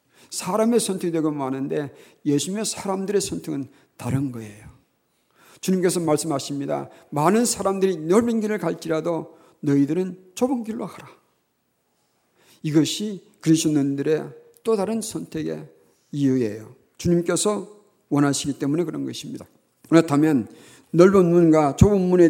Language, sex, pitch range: Korean, male, 140-190 Hz